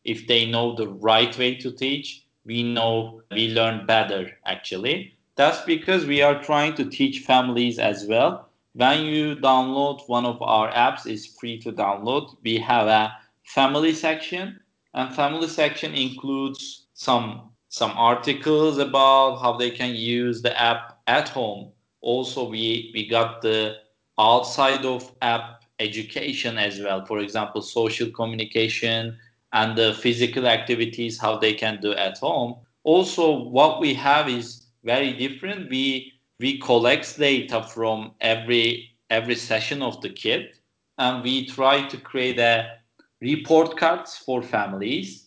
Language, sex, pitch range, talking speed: English, male, 115-135 Hz, 145 wpm